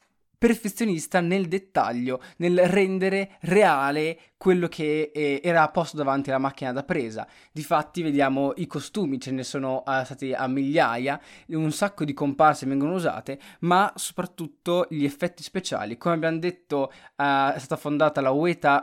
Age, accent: 20-39, native